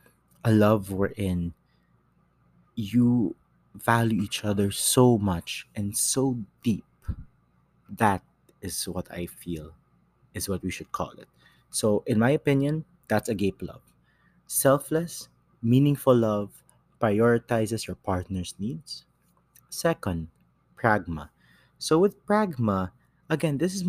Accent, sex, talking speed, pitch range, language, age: Filipino, male, 120 wpm, 95-130 Hz, English, 30-49